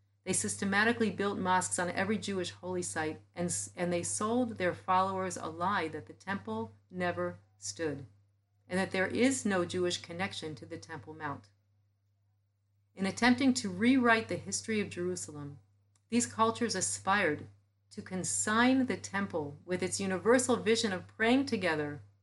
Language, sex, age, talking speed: English, female, 40-59, 150 wpm